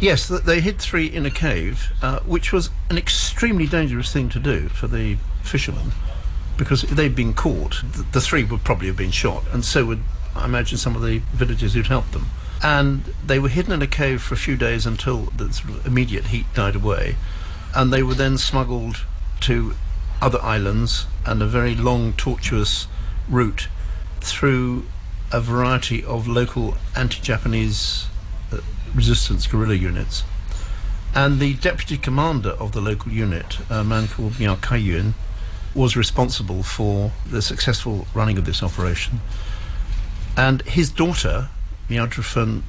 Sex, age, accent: male, 60-79, British